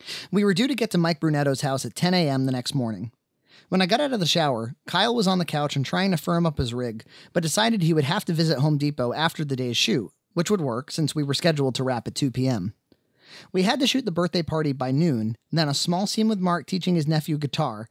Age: 30-49